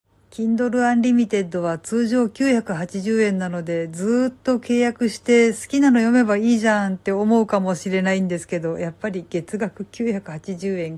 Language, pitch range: Japanese, 190-240 Hz